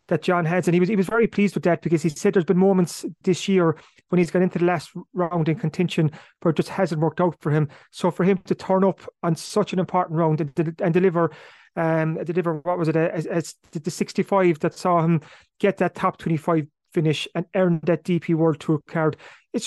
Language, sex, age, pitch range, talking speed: English, male, 30-49, 160-185 Hz, 230 wpm